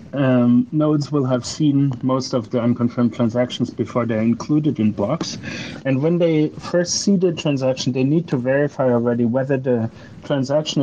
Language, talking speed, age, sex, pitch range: English, 165 wpm, 30-49, male, 120-145 Hz